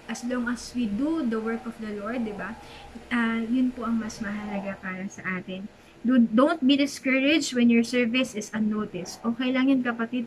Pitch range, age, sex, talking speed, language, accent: 215-250 Hz, 20-39, female, 195 wpm, English, Filipino